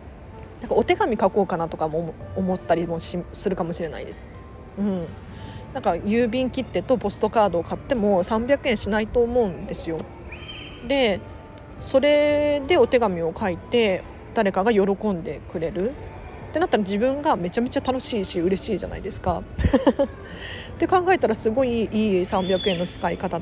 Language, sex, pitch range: Japanese, female, 175-255 Hz